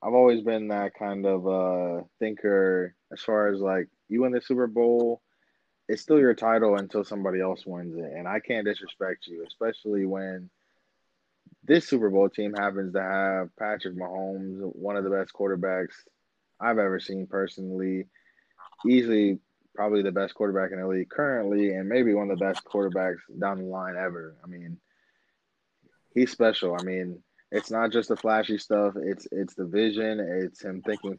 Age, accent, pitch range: 20-39, American, 95-110 Hz